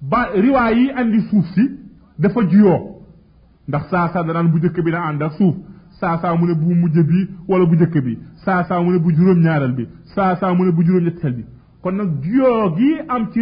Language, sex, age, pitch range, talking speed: French, male, 30-49, 155-200 Hz, 60 wpm